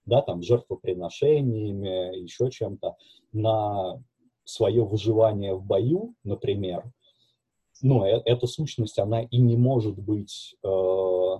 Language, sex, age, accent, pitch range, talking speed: Russian, male, 30-49, native, 95-120 Hz, 115 wpm